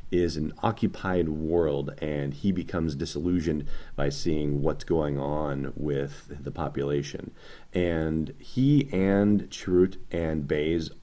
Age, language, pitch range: 30-49, English, 75-95 Hz